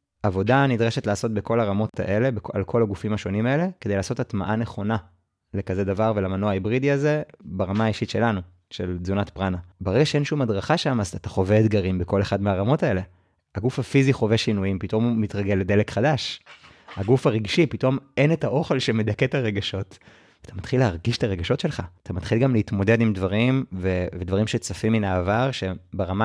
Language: Hebrew